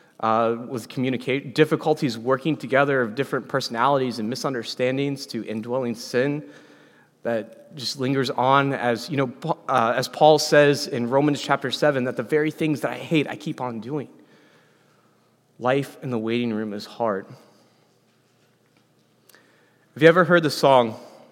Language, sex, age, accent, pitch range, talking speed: English, male, 30-49, American, 110-135 Hz, 150 wpm